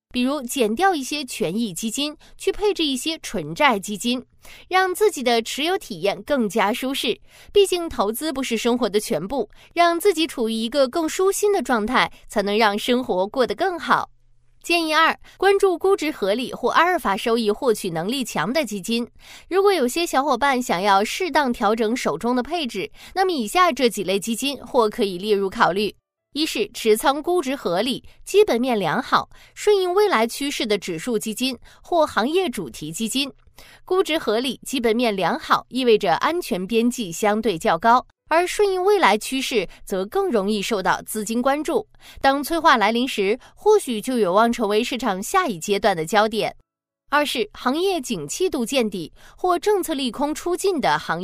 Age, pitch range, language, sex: 20-39, 215-325 Hz, Chinese, female